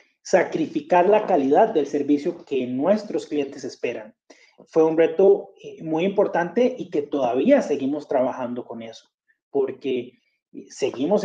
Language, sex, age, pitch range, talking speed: Spanish, male, 30-49, 145-210 Hz, 125 wpm